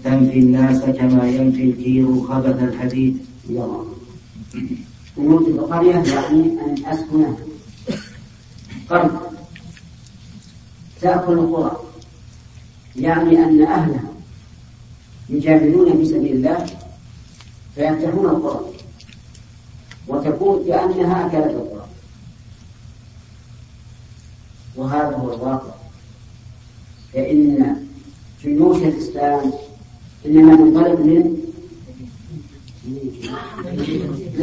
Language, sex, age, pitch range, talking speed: Arabic, female, 50-69, 115-165 Hz, 55 wpm